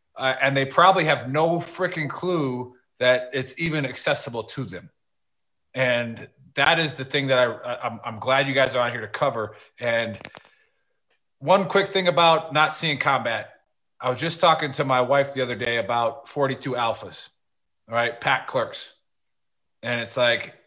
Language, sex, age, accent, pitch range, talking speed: English, male, 30-49, American, 130-165 Hz, 170 wpm